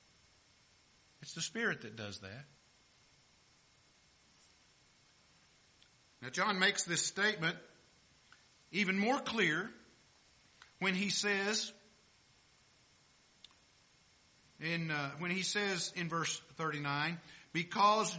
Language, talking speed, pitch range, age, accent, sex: English, 85 wpm, 140-200 Hz, 50-69, American, male